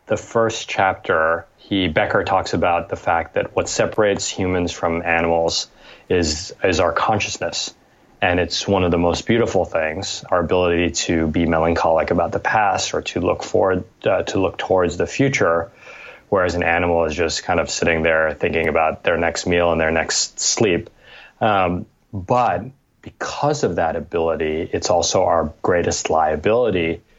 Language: English